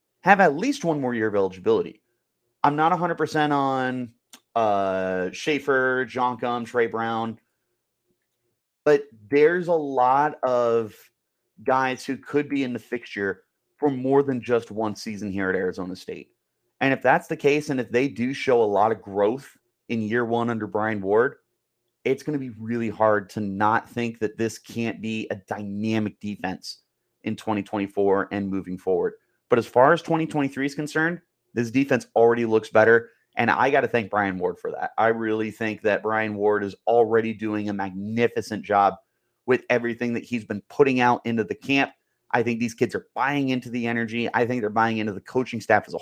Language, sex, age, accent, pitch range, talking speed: English, male, 30-49, American, 110-130 Hz, 190 wpm